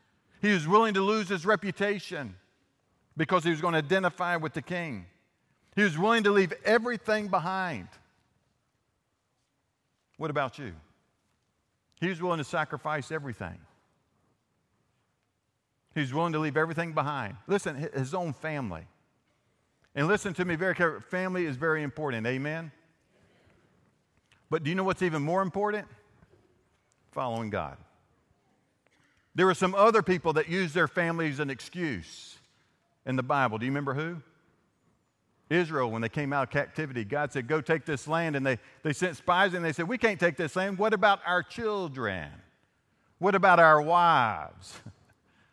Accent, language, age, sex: American, English, 50-69, male